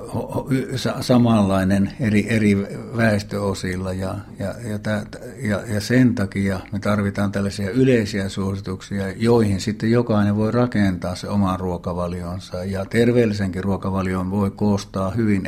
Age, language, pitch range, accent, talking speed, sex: 60-79, Finnish, 95-110 Hz, native, 110 wpm, male